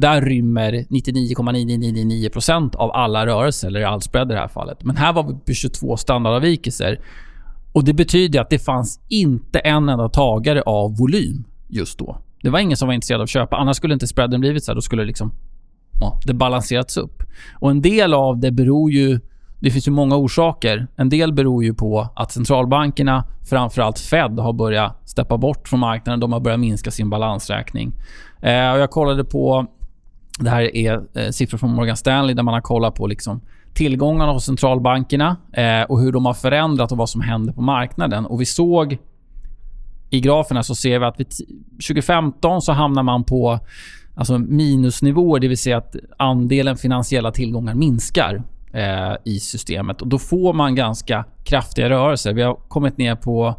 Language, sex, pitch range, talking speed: Swedish, male, 115-140 Hz, 180 wpm